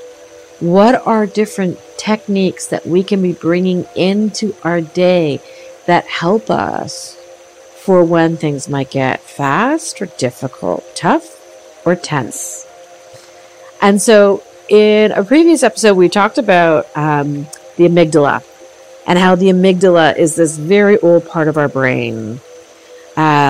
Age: 50-69